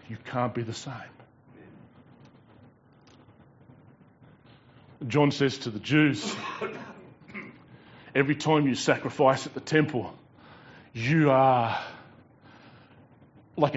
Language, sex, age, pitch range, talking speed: English, male, 30-49, 135-185 Hz, 85 wpm